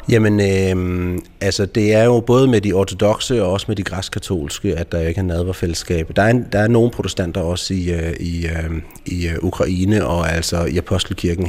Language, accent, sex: Danish, native, male